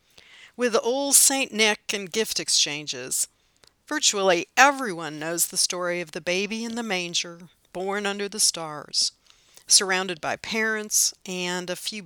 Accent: American